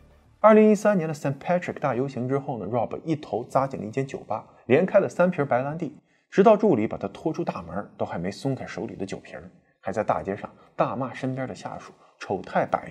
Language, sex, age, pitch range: Chinese, male, 20-39, 125-180 Hz